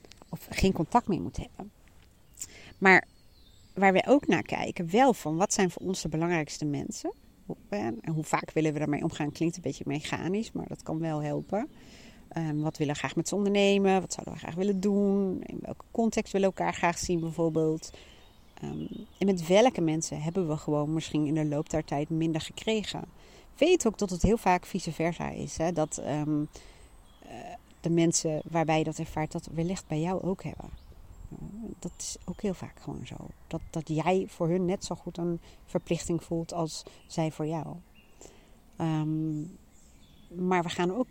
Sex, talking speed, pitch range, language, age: female, 185 wpm, 155-195 Hz, Dutch, 40-59